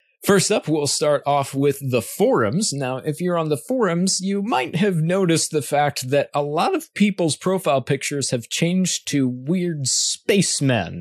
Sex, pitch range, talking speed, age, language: male, 110-145 Hz, 175 wpm, 30-49, English